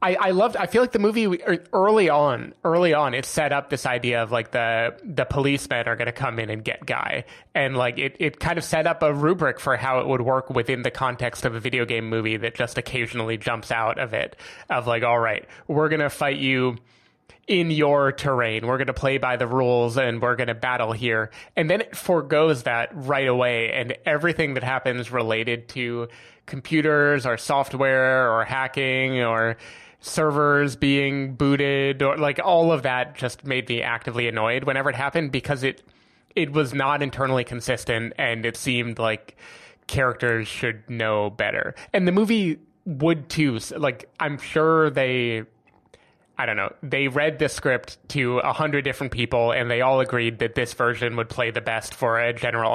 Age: 20-39